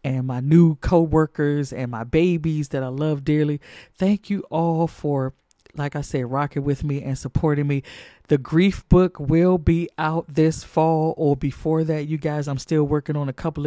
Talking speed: 190 wpm